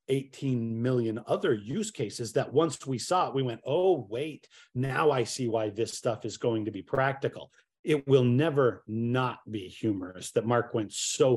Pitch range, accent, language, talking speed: 120-145 Hz, American, English, 185 wpm